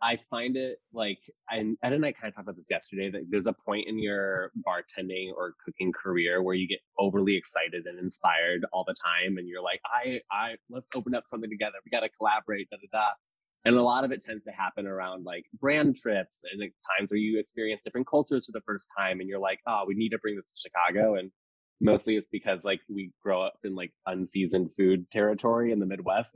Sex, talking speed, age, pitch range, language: male, 230 wpm, 20-39, 100-115 Hz, English